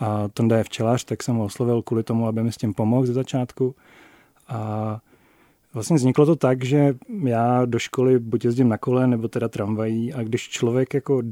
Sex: male